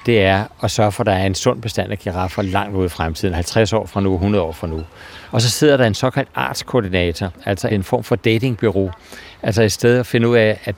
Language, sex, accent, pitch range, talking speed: Danish, male, native, 100-120 Hz, 250 wpm